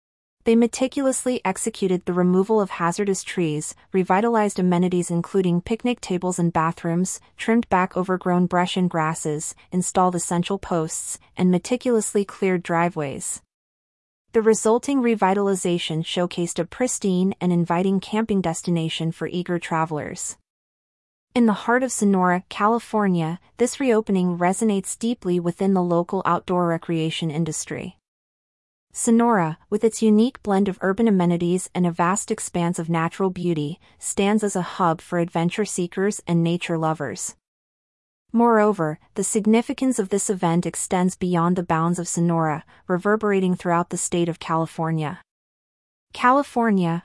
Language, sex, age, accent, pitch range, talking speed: English, female, 30-49, American, 170-210 Hz, 130 wpm